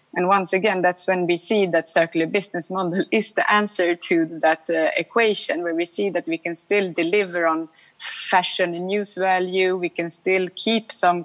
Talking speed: 190 wpm